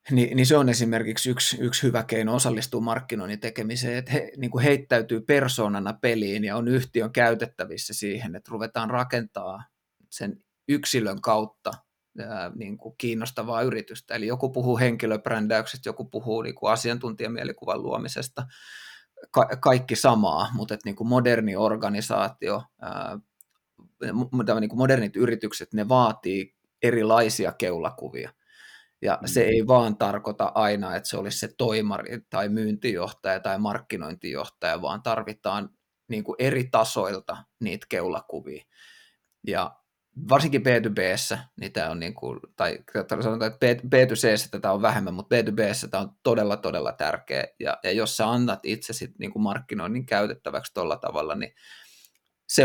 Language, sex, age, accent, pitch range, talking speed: Finnish, male, 20-39, native, 110-125 Hz, 130 wpm